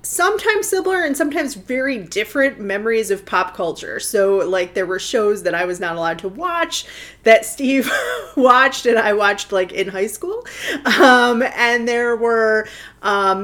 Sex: female